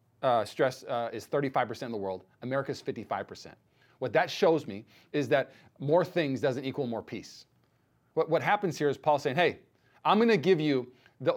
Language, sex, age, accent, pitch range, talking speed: English, male, 30-49, American, 135-175 Hz, 190 wpm